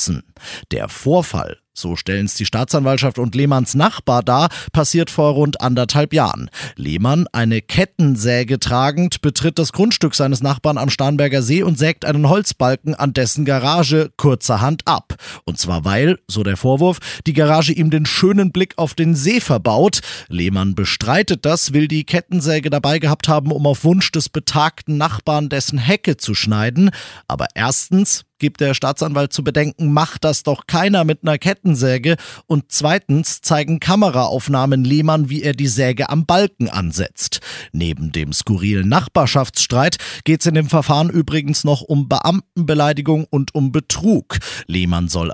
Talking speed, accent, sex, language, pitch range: 155 wpm, German, male, German, 125-160 Hz